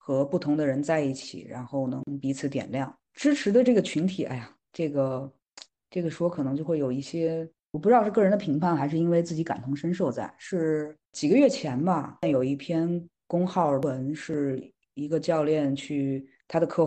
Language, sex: Chinese, female